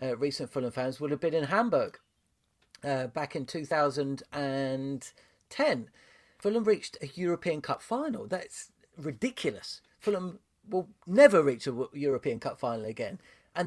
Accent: British